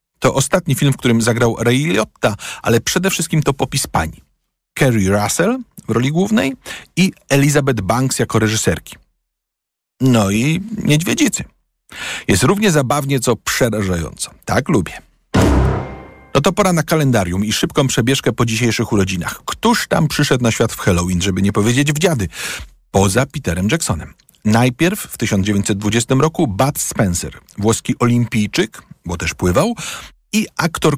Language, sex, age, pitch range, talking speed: Polish, male, 50-69, 105-150 Hz, 145 wpm